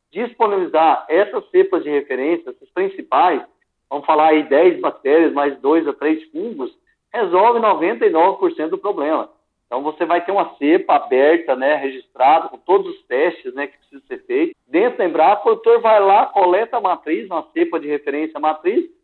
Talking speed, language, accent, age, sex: 175 wpm, Portuguese, Brazilian, 50-69, male